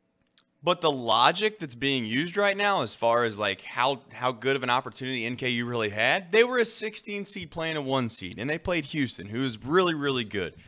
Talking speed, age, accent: 220 wpm, 30-49, American